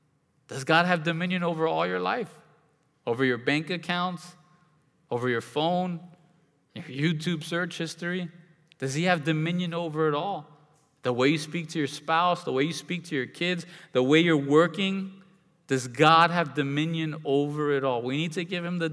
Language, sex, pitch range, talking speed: English, male, 145-175 Hz, 180 wpm